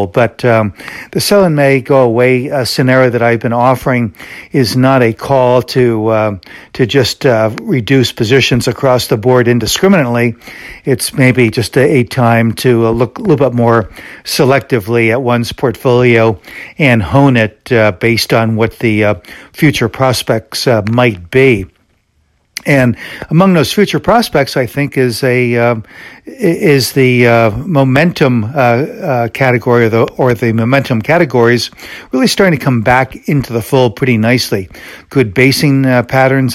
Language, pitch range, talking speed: English, 115-135 Hz, 150 wpm